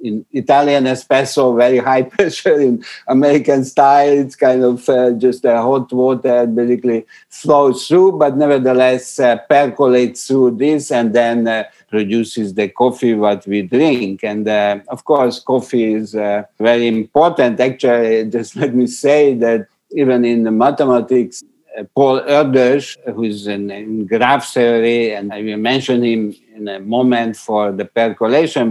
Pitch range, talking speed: 110-130 Hz, 155 wpm